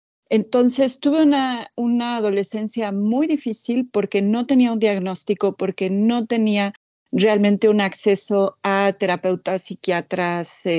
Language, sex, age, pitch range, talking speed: Spanish, female, 30-49, 185-225 Hz, 115 wpm